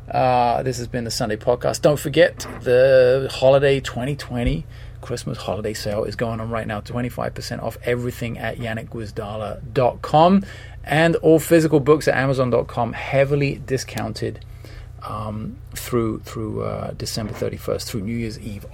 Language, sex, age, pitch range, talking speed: English, male, 30-49, 110-125 Hz, 140 wpm